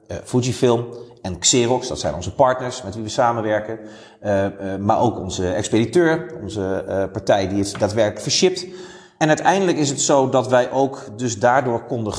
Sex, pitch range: male, 105-130 Hz